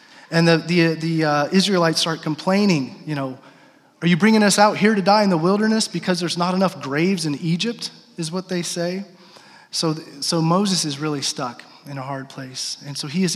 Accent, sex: American, male